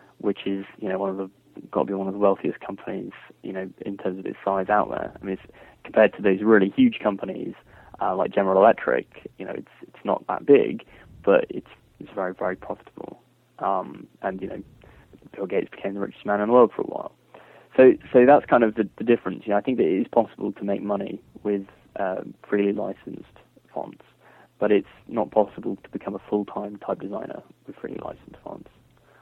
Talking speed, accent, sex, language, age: 215 wpm, British, male, English, 20-39